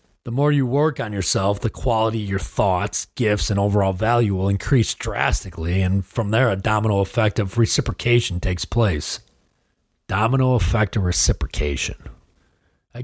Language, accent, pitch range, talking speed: English, American, 90-115 Hz, 150 wpm